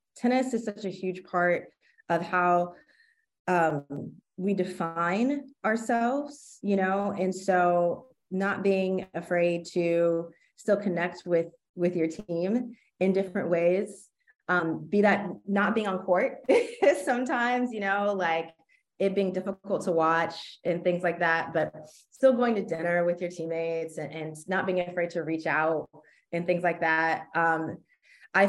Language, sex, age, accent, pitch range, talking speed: English, female, 20-39, American, 165-195 Hz, 150 wpm